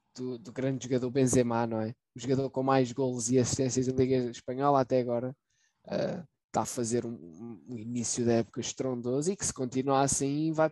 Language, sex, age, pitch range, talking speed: Portuguese, male, 20-39, 125-155 Hz, 195 wpm